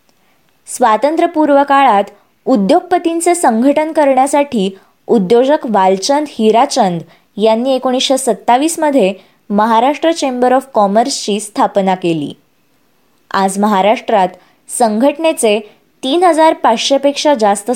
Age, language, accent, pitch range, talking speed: 20-39, Marathi, native, 210-295 Hz, 80 wpm